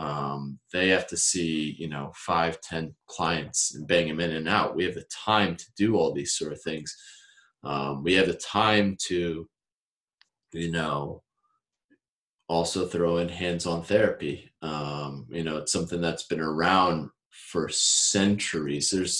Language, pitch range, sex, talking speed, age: English, 80-100 Hz, male, 160 wpm, 30-49